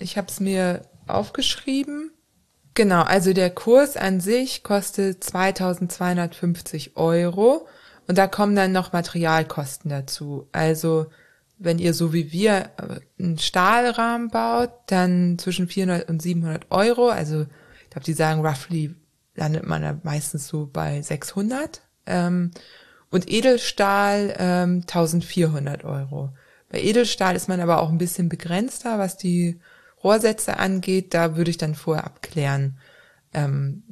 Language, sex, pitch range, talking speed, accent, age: German, female, 165-205 Hz, 130 wpm, German, 20-39